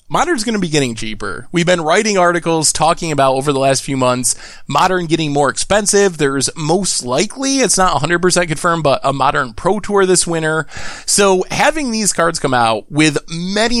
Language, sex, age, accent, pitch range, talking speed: English, male, 20-39, American, 135-195 Hz, 185 wpm